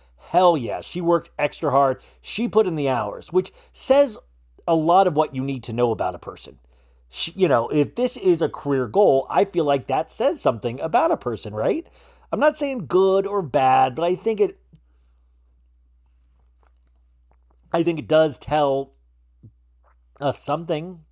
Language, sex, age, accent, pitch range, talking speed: English, male, 40-59, American, 115-185 Hz, 170 wpm